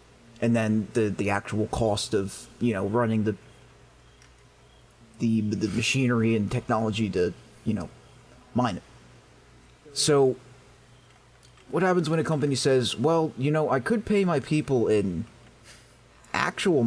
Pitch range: 105-135 Hz